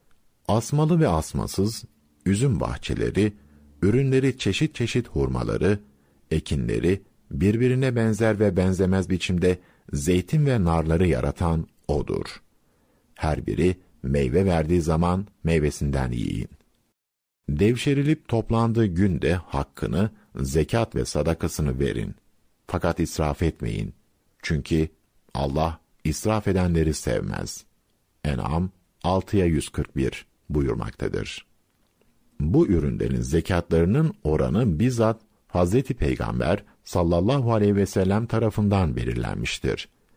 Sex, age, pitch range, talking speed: male, 50-69, 75-105 Hz, 90 wpm